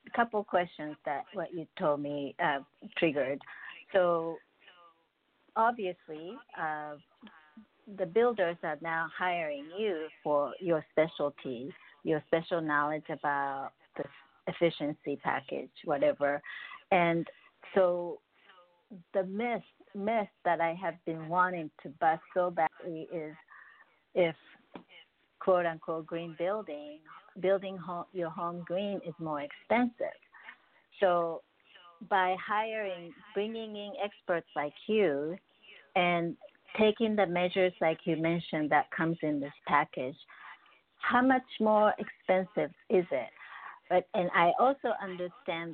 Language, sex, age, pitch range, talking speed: English, female, 50-69, 160-205 Hz, 115 wpm